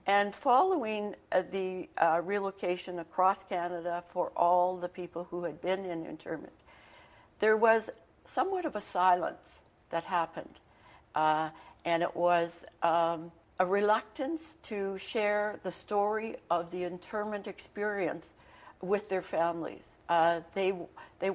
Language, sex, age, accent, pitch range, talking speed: English, female, 60-79, American, 175-205 Hz, 130 wpm